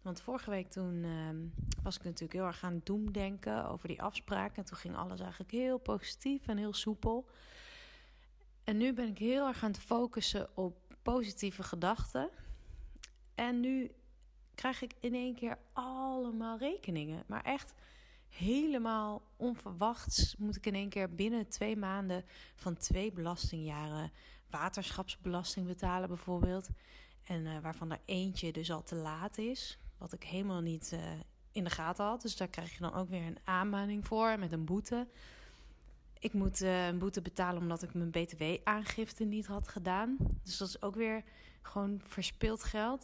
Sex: female